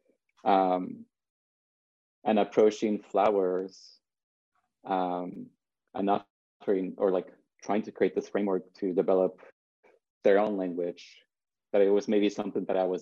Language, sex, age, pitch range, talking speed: English, male, 20-39, 90-105 Hz, 120 wpm